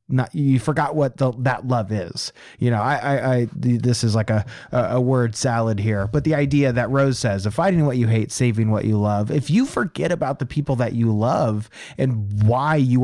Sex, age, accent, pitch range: male, 30-49, American, 110-130 Hz